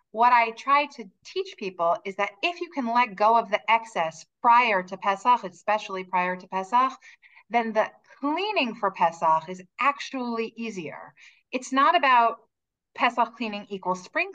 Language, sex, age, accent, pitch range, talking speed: English, female, 30-49, American, 200-250 Hz, 160 wpm